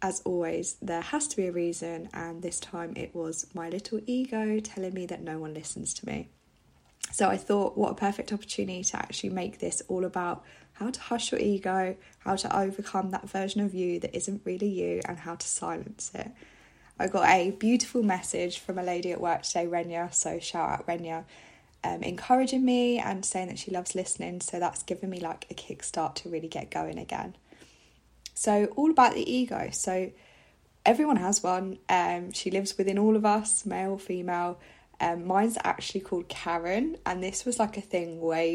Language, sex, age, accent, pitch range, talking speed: English, female, 20-39, British, 170-205 Hz, 195 wpm